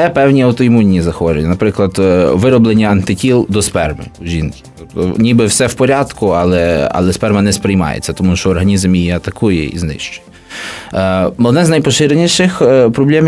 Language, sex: Ukrainian, male